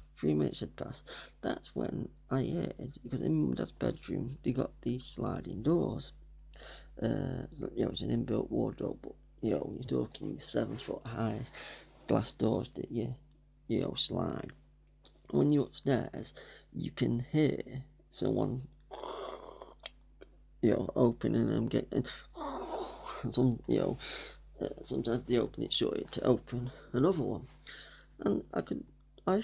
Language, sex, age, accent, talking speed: English, male, 40-59, British, 145 wpm